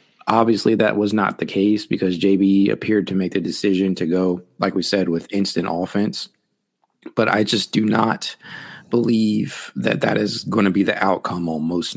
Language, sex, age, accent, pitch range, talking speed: English, male, 30-49, American, 90-105 Hz, 185 wpm